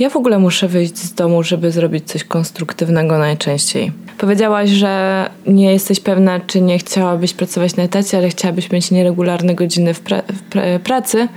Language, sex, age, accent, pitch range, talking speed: Polish, female, 20-39, native, 175-200 Hz, 155 wpm